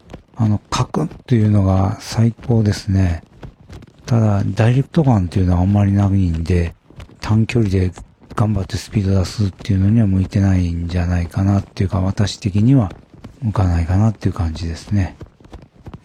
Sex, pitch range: male, 95-115 Hz